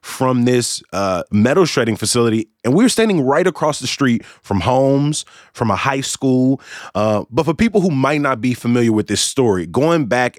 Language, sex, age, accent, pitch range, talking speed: English, male, 20-39, American, 110-135 Hz, 195 wpm